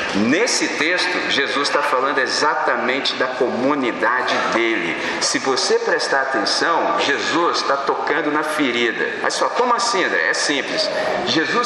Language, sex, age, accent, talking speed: Portuguese, male, 40-59, Brazilian, 140 wpm